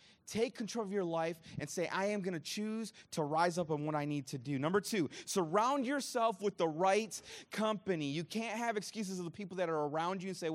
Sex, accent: male, American